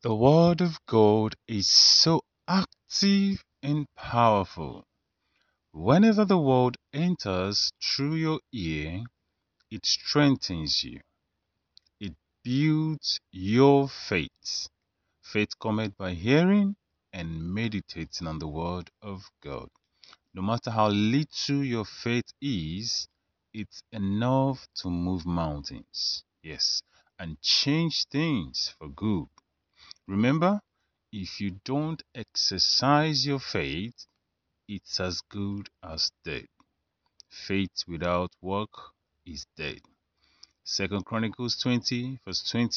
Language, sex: English, male